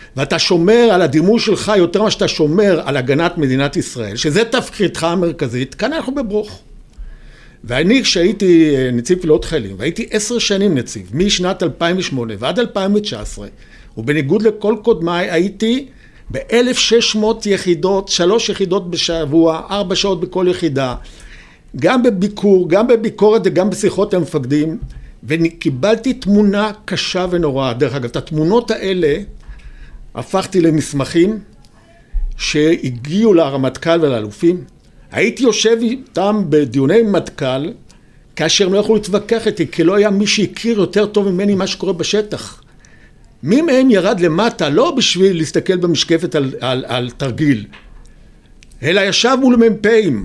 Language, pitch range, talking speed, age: Hebrew, 155-210 Hz, 125 wpm, 60-79